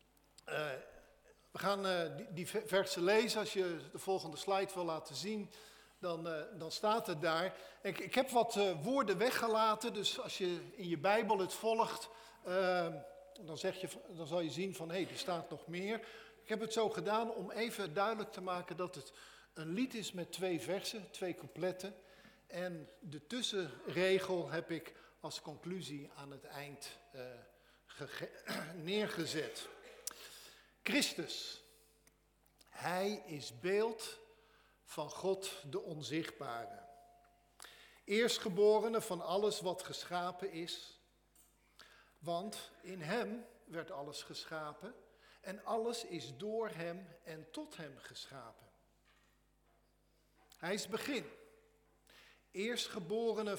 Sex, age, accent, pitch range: male, 50-69, Dutch, 165-215 Hz